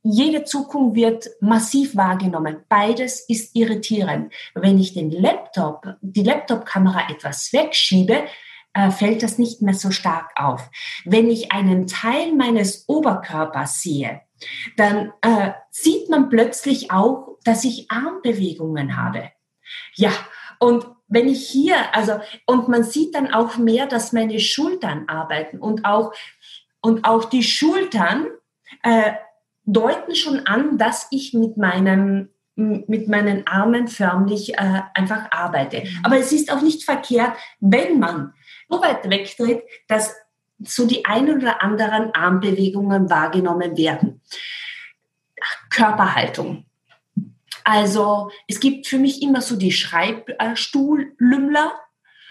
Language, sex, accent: German, female, German